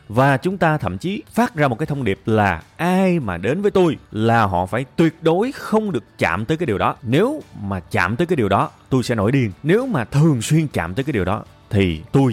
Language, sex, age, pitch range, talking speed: Vietnamese, male, 20-39, 95-160 Hz, 250 wpm